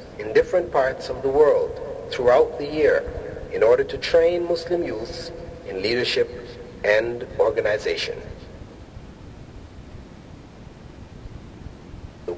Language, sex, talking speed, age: Filipino, male, 95 wpm, 50-69